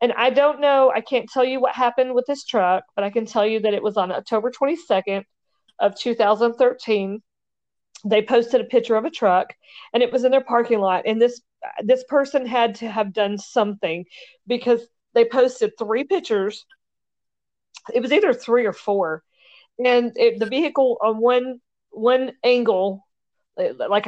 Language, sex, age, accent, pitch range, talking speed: English, female, 40-59, American, 205-255 Hz, 170 wpm